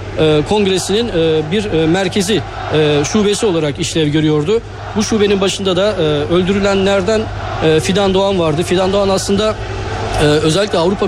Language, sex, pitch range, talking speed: Turkish, male, 155-200 Hz, 145 wpm